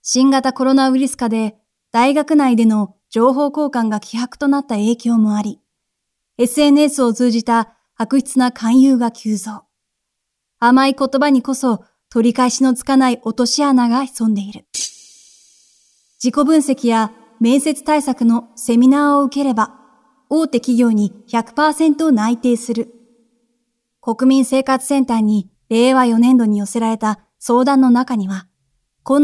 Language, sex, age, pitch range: Japanese, female, 30-49, 225-270 Hz